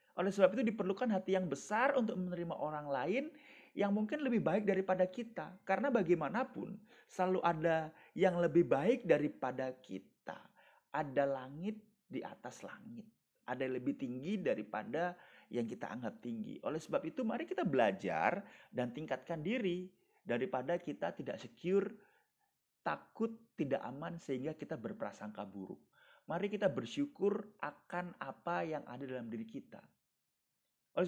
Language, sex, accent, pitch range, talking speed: Indonesian, male, native, 150-220 Hz, 135 wpm